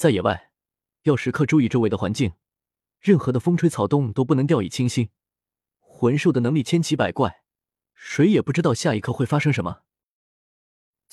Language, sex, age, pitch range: Chinese, male, 20-39, 115-155 Hz